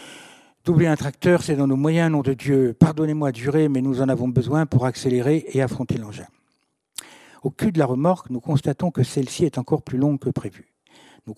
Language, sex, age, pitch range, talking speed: French, male, 60-79, 120-150 Hz, 205 wpm